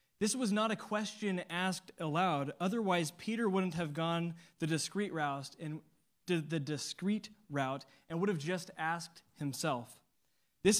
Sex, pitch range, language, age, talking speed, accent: male, 155-200 Hz, English, 20-39, 150 wpm, American